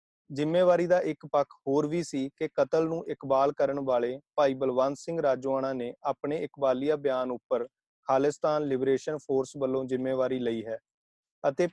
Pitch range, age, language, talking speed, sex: 130-150 Hz, 30-49, Punjabi, 155 wpm, male